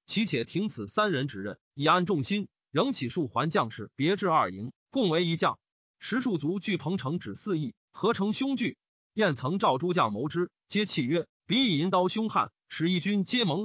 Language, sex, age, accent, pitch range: Chinese, male, 30-49, native, 145-210 Hz